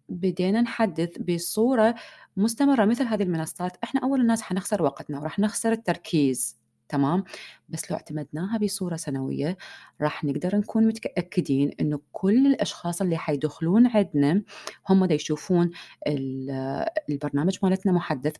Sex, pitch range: female, 155-215 Hz